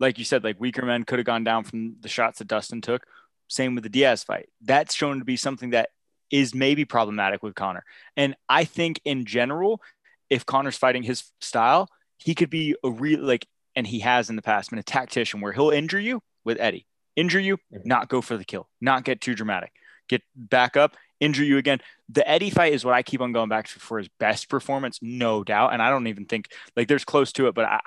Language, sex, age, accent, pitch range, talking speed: English, male, 20-39, American, 115-145 Hz, 235 wpm